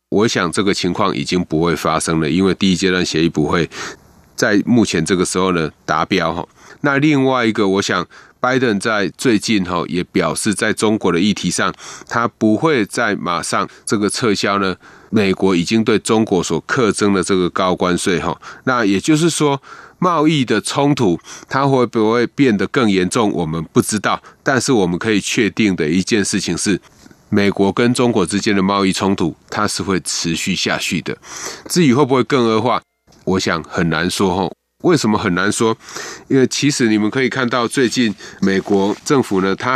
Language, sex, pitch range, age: Chinese, male, 95-120 Hz, 30-49